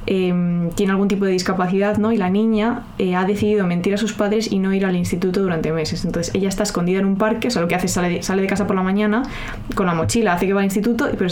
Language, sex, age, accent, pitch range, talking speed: Spanish, female, 20-39, Spanish, 185-225 Hz, 285 wpm